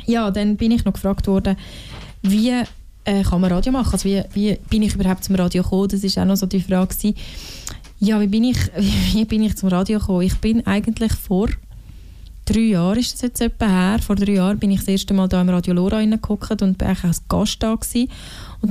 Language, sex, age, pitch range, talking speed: German, female, 20-39, 190-220 Hz, 230 wpm